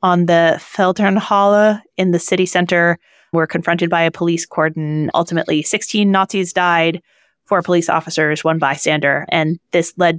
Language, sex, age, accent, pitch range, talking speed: English, female, 30-49, American, 165-210 Hz, 145 wpm